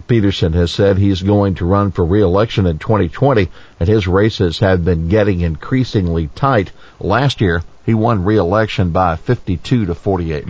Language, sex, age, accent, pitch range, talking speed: English, male, 50-69, American, 95-125 Hz, 165 wpm